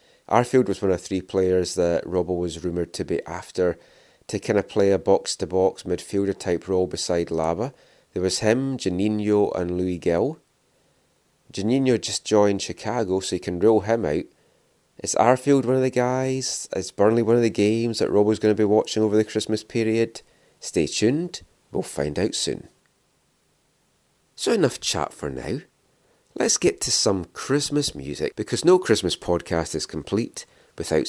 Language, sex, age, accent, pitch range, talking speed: English, male, 30-49, British, 90-115 Hz, 165 wpm